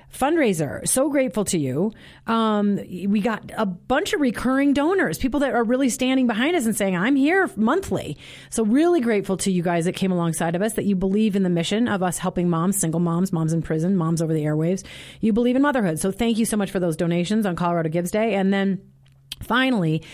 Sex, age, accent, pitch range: female, 30-49, American, 170-220 Hz